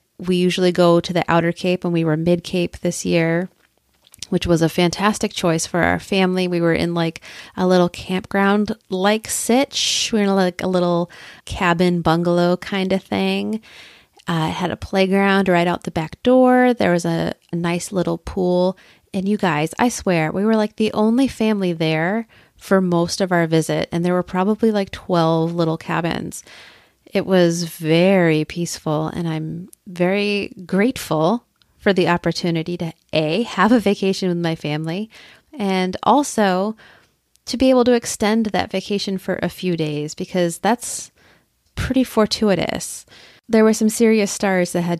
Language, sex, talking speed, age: English, female, 165 wpm, 30-49